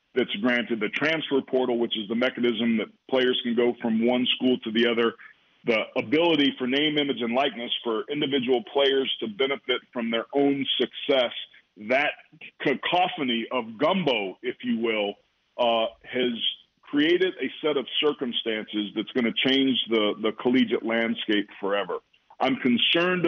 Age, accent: 40-59, American